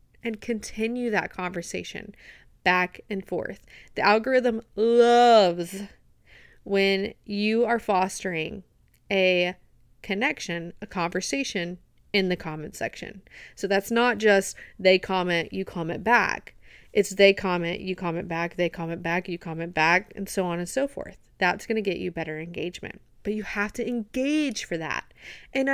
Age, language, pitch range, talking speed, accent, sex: 30-49, English, 180-235 Hz, 150 wpm, American, female